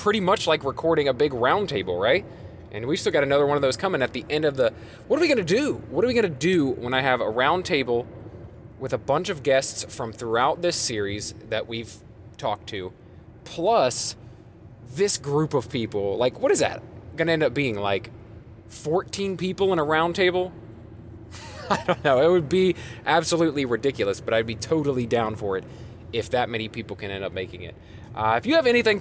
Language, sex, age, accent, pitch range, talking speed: English, male, 20-39, American, 110-145 Hz, 215 wpm